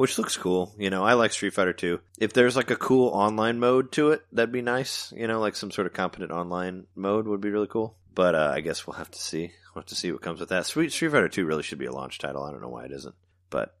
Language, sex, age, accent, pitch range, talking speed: English, male, 30-49, American, 90-110 Hz, 295 wpm